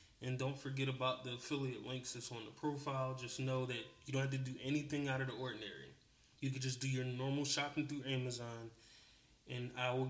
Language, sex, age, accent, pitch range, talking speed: English, male, 20-39, American, 125-140 Hz, 215 wpm